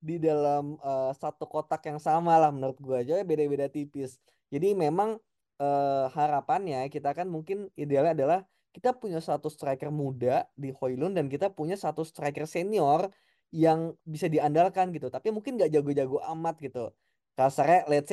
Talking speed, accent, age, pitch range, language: 155 wpm, native, 10-29, 135-175 Hz, Indonesian